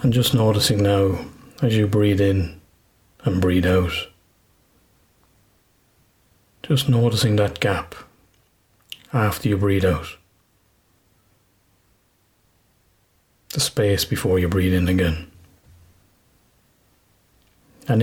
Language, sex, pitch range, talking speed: English, male, 95-110 Hz, 90 wpm